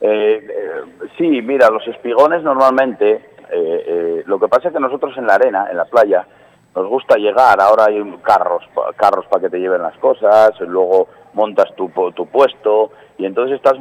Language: Spanish